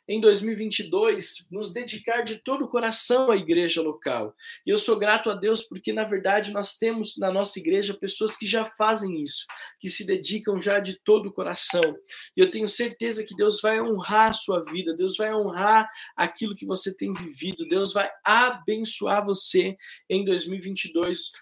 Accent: Brazilian